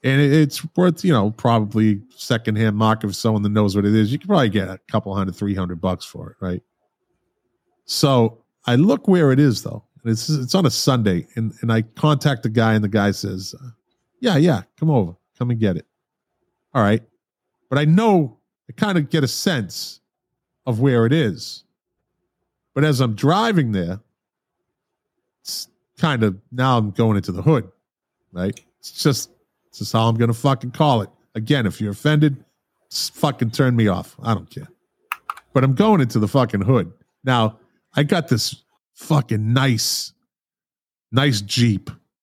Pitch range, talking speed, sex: 110-145 Hz, 175 wpm, male